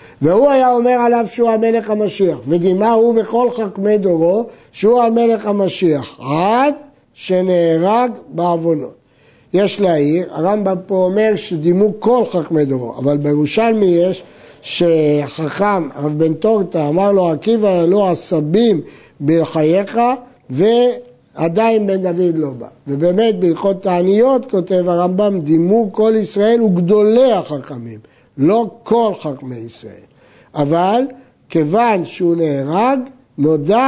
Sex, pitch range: male, 165-220 Hz